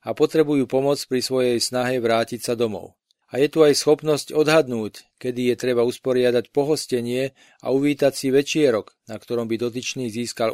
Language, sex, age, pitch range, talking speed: Slovak, male, 40-59, 120-145 Hz, 165 wpm